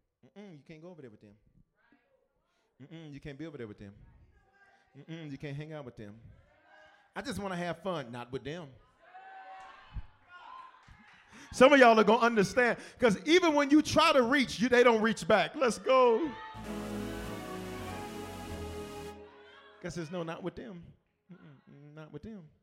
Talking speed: 165 wpm